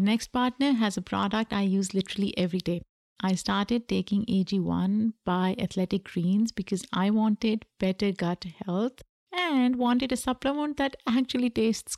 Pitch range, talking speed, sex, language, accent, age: 190-230 Hz, 150 wpm, female, English, Indian, 50-69